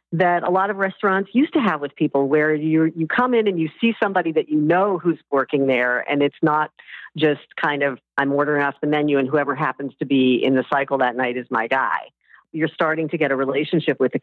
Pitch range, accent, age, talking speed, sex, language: 140-170 Hz, American, 50-69, 240 wpm, female, English